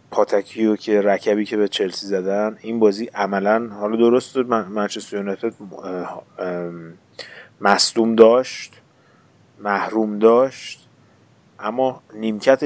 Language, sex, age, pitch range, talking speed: Persian, male, 30-49, 100-120 Hz, 100 wpm